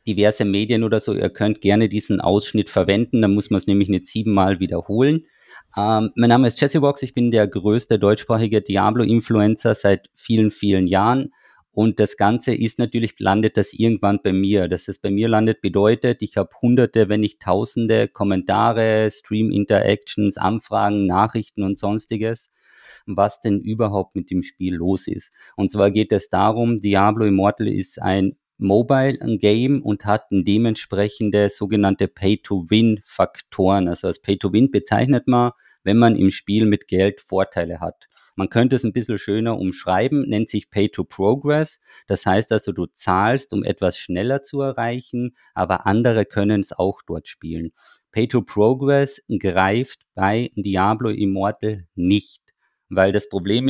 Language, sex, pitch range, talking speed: German, male, 100-115 Hz, 150 wpm